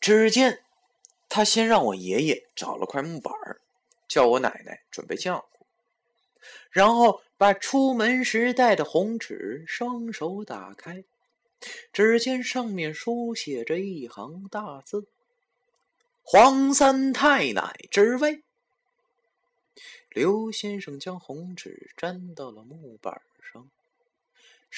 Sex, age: male, 30-49